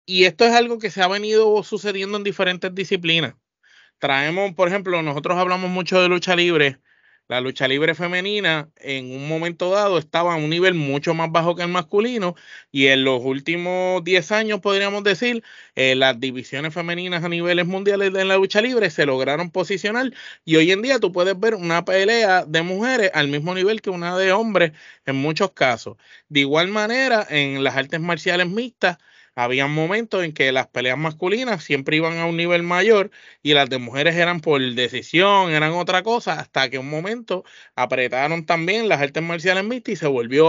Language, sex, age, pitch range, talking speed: Spanish, male, 20-39, 155-200 Hz, 185 wpm